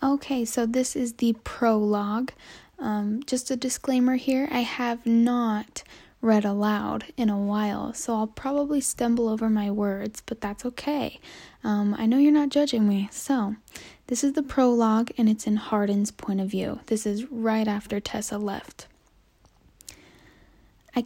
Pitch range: 215-245 Hz